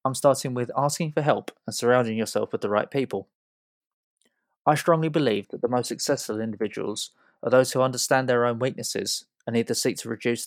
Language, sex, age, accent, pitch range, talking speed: English, male, 20-39, British, 115-135 Hz, 190 wpm